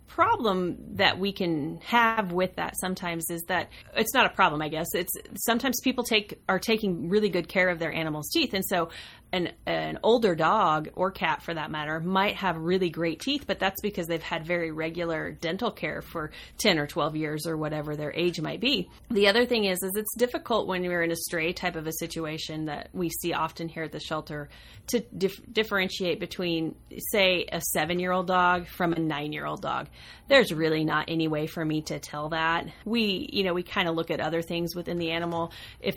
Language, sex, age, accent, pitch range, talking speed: English, female, 30-49, American, 160-190 Hz, 210 wpm